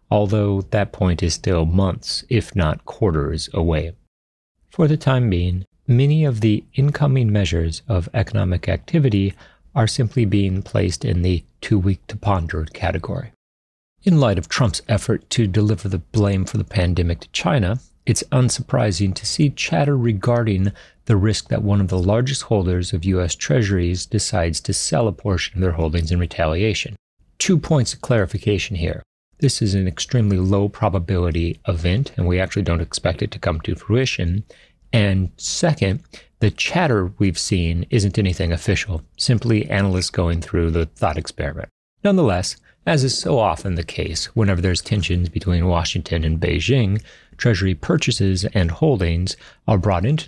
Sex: male